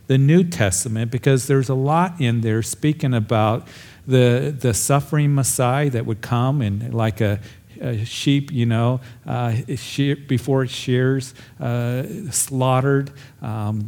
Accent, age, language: American, 50-69, English